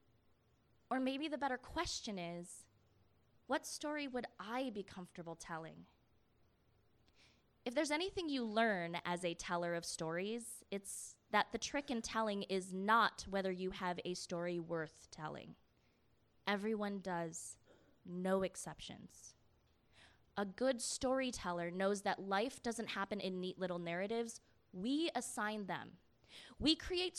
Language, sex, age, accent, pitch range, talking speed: English, female, 20-39, American, 180-245 Hz, 130 wpm